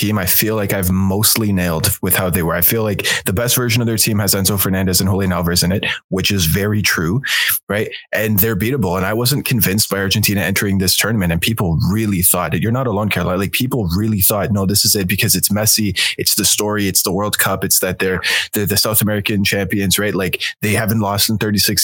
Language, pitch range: English, 95-110 Hz